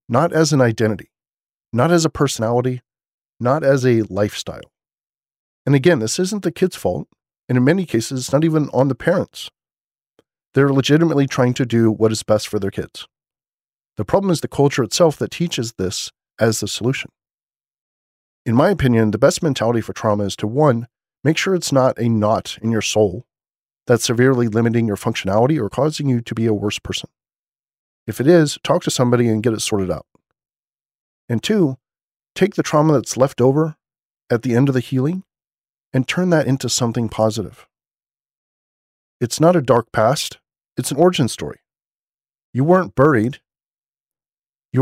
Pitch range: 110-145 Hz